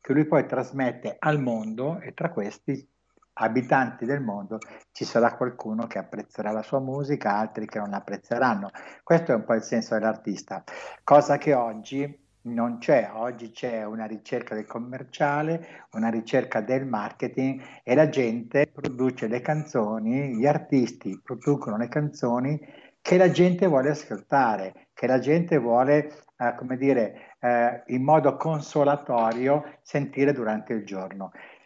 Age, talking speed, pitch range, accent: 60-79, 145 wpm, 115-145 Hz, native